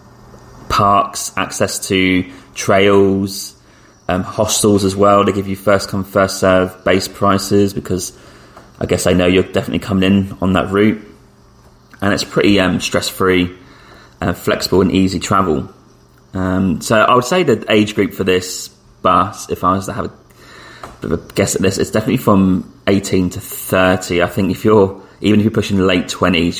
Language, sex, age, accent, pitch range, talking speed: English, male, 20-39, British, 90-100 Hz, 175 wpm